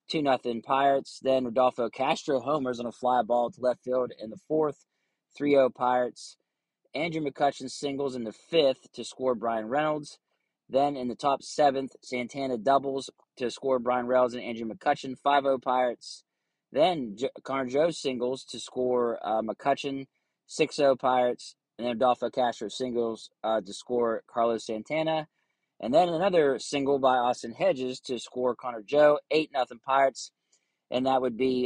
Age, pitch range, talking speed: 20-39, 120-135 Hz, 155 wpm